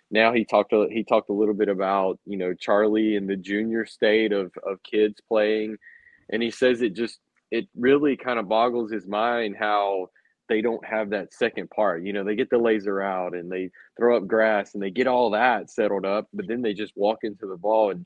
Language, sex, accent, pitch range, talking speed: English, male, American, 100-115 Hz, 230 wpm